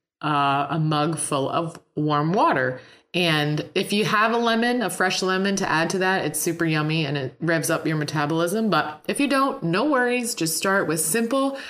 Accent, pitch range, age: American, 165-205 Hz, 30-49